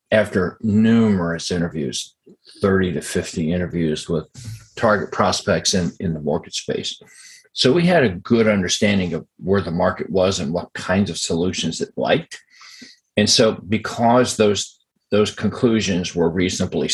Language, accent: English, American